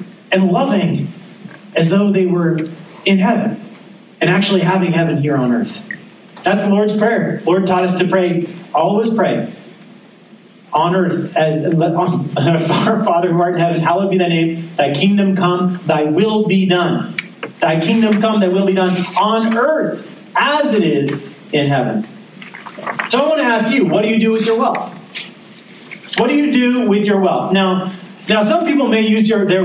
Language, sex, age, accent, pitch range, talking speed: English, male, 40-59, American, 180-220 Hz, 185 wpm